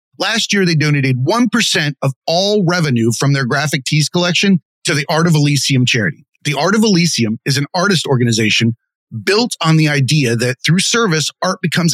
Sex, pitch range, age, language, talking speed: male, 140-185 Hz, 30-49, English, 180 wpm